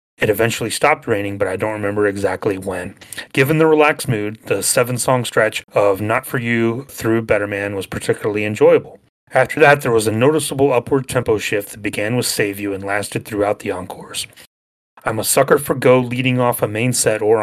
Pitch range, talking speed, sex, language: 105-130 Hz, 200 wpm, male, English